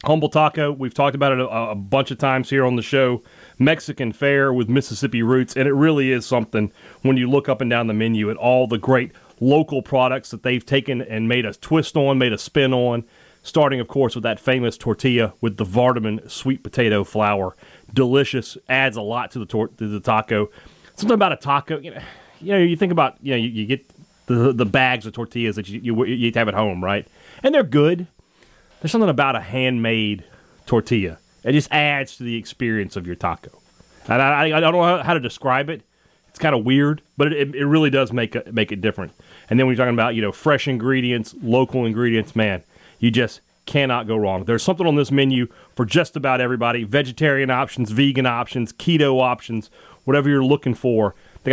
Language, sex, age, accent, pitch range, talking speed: English, male, 30-49, American, 115-140 Hz, 210 wpm